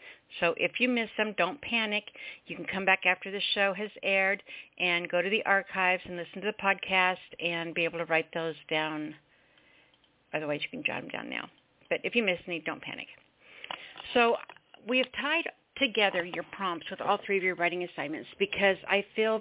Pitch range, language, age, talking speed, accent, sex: 175-205 Hz, English, 60-79, 200 wpm, American, female